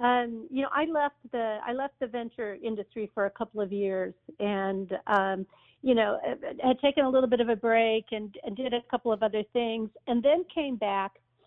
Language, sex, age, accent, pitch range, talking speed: English, female, 50-69, American, 200-245 Hz, 210 wpm